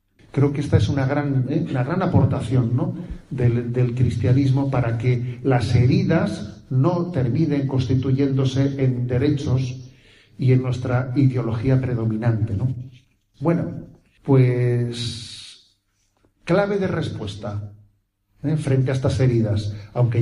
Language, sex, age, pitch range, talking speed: Spanish, male, 40-59, 115-135 Hz, 115 wpm